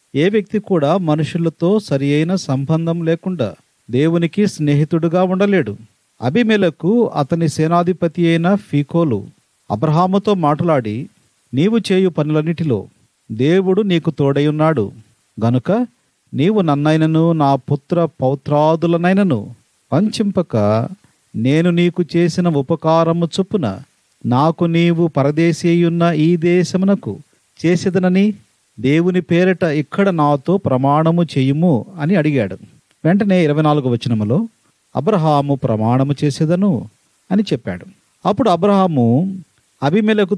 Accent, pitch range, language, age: native, 140-185 Hz, Telugu, 40-59